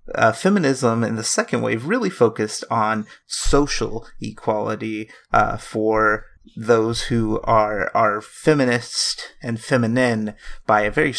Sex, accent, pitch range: male, American, 110-120 Hz